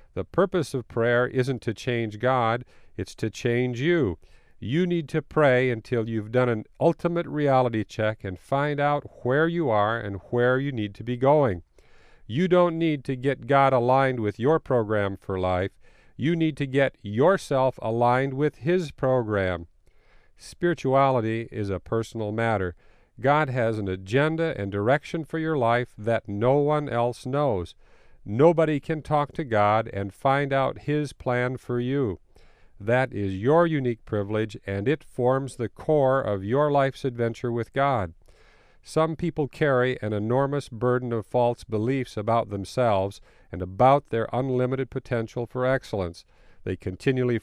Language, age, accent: English, 50-69, American